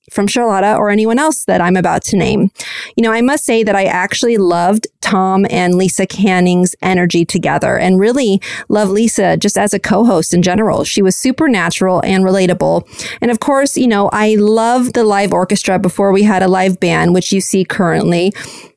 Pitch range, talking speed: 190-235 Hz, 190 wpm